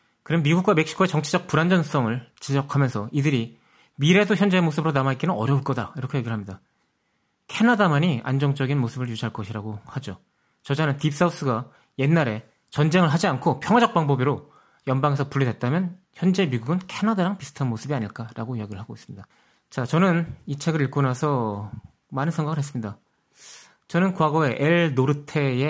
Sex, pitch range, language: male, 120-160 Hz, Korean